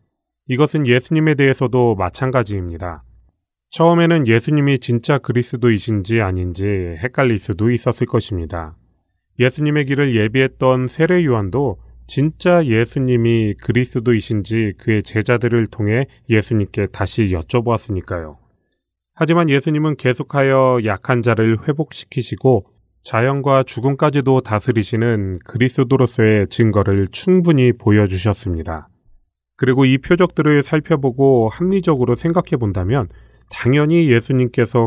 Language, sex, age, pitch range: Korean, male, 30-49, 105-135 Hz